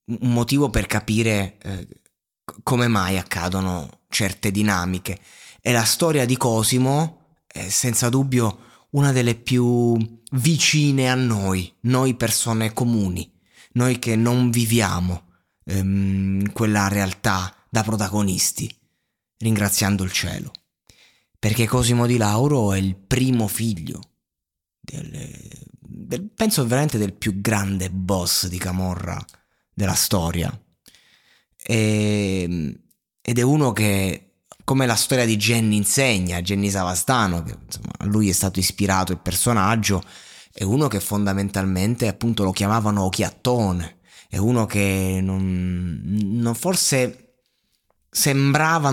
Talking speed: 115 wpm